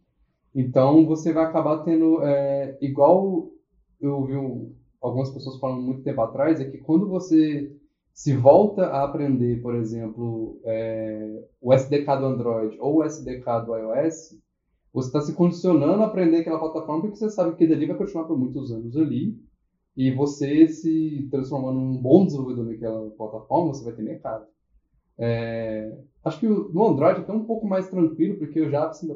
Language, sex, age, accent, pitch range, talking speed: Portuguese, male, 10-29, Brazilian, 125-165 Hz, 170 wpm